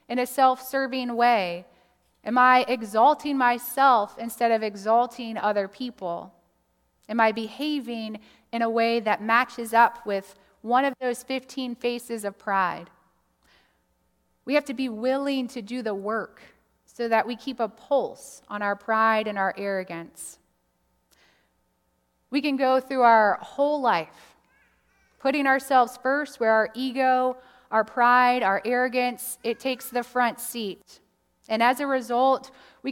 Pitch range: 215-255 Hz